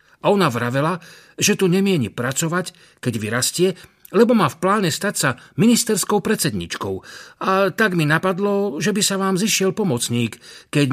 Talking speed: 155 wpm